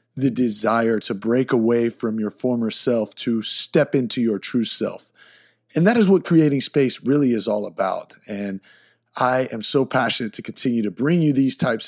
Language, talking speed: English, 185 wpm